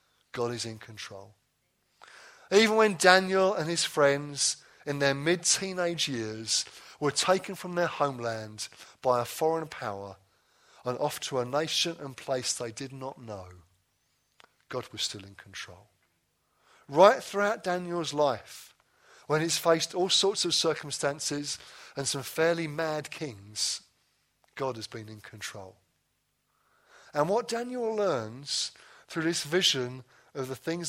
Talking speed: 135 wpm